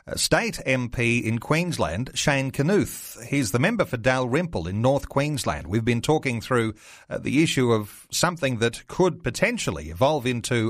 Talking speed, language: 155 wpm, English